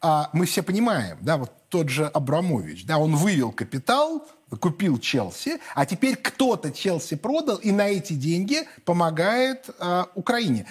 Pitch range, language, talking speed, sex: 140-215 Hz, Russian, 140 wpm, male